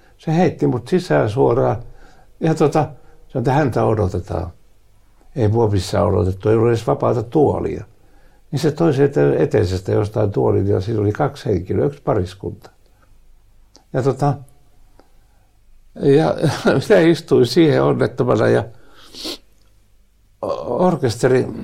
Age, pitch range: 60-79, 100-145 Hz